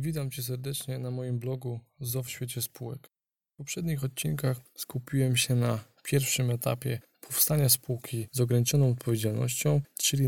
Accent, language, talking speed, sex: native, Polish, 140 wpm, male